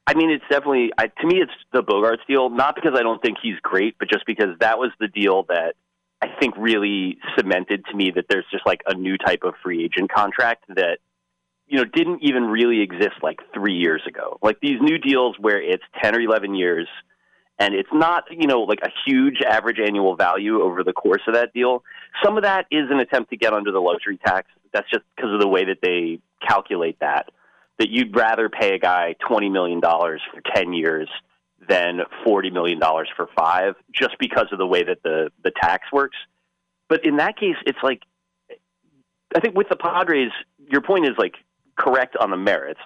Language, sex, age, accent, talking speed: English, male, 30-49, American, 205 wpm